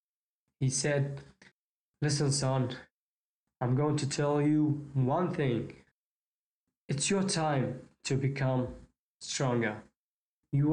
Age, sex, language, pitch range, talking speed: 20-39, male, English, 130-155 Hz, 100 wpm